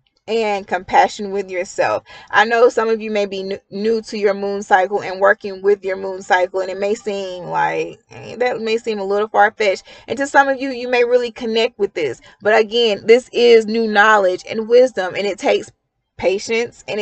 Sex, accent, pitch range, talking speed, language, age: female, American, 195-245 Hz, 210 wpm, English, 30-49